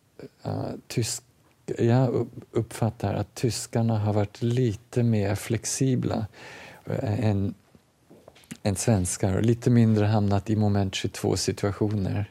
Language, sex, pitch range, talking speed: Swedish, male, 95-115 Hz, 95 wpm